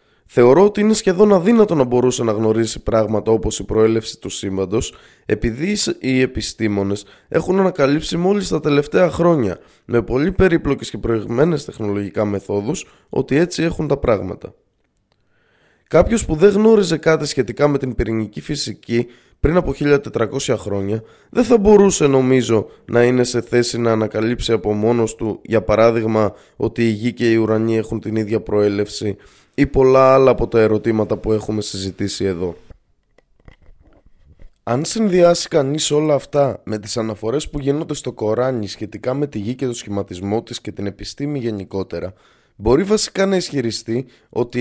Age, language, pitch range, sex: 20-39, Greek, 110-155 Hz, male